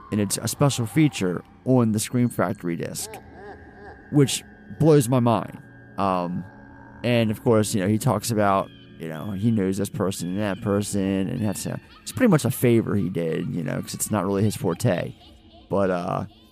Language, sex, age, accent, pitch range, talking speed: English, male, 30-49, American, 100-125 Hz, 190 wpm